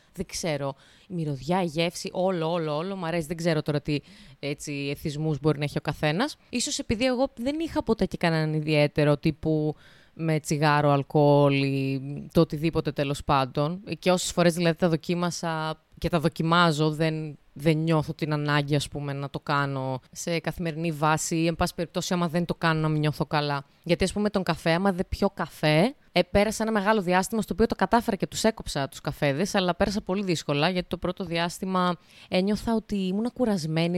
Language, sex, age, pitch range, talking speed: Greek, female, 20-39, 155-200 Hz, 190 wpm